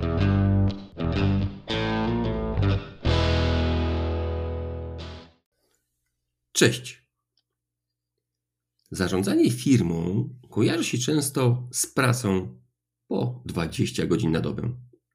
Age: 50-69